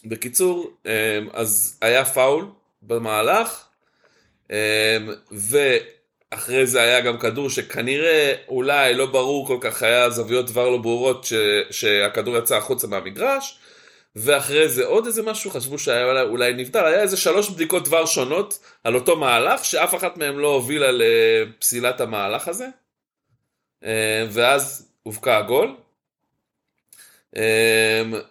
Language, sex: Hebrew, male